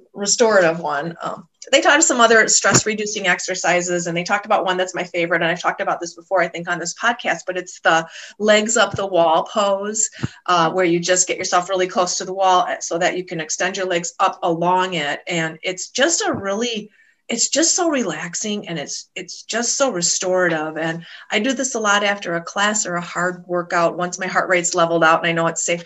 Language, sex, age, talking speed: English, female, 30-49, 225 wpm